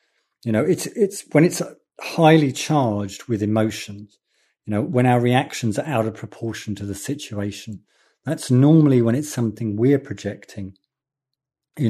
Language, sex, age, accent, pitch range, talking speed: English, male, 50-69, British, 100-125 Hz, 150 wpm